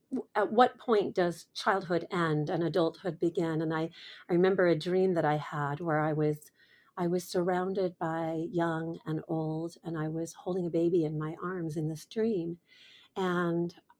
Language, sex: English, female